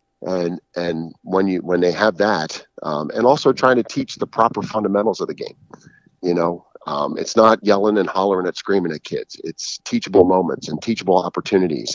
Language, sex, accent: English, male, American